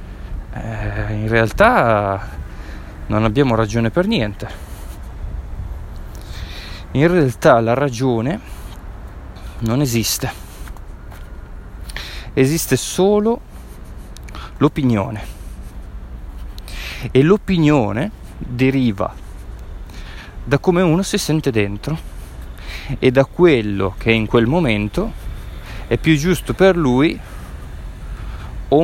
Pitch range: 90-130 Hz